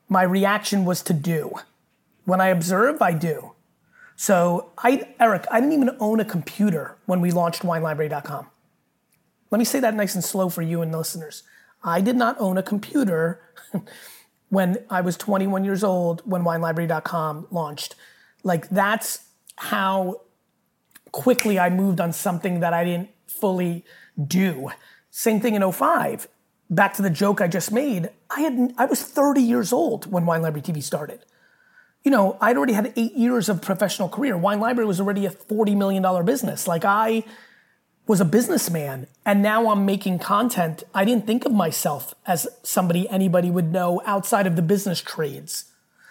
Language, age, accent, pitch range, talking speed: English, 30-49, American, 175-225 Hz, 165 wpm